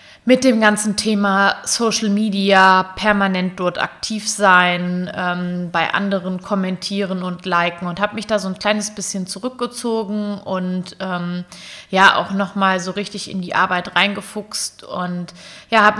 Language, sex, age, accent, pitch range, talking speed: German, female, 20-39, German, 175-205 Hz, 145 wpm